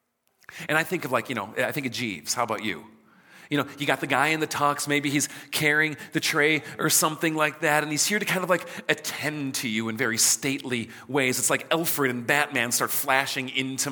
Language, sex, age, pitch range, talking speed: English, male, 40-59, 120-155 Hz, 235 wpm